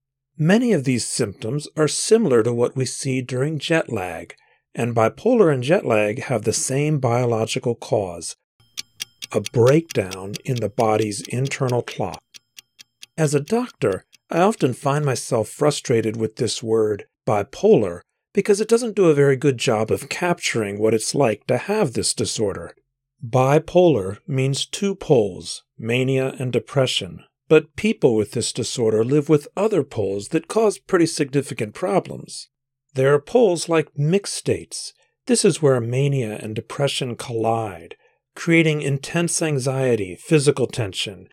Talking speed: 140 wpm